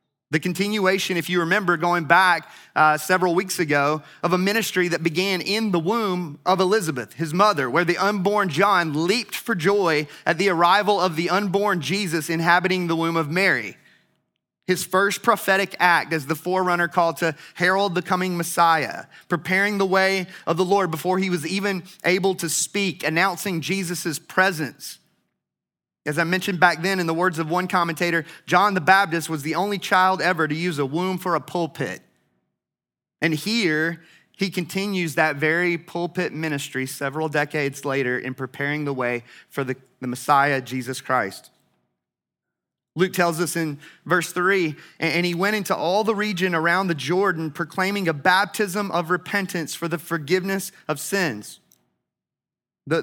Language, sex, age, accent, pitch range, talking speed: English, male, 30-49, American, 160-190 Hz, 165 wpm